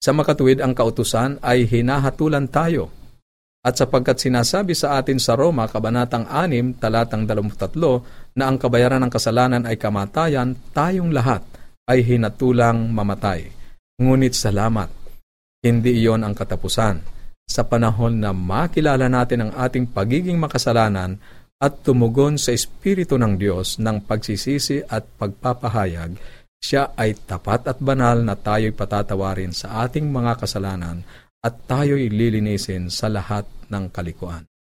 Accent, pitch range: native, 100-130 Hz